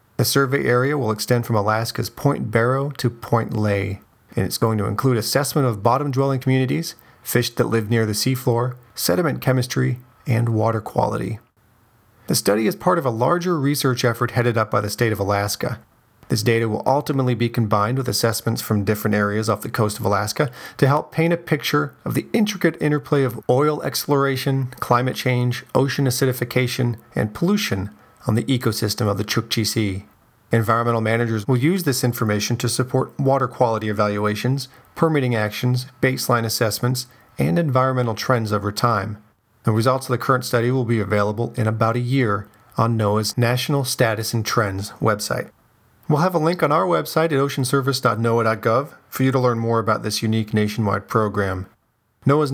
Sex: male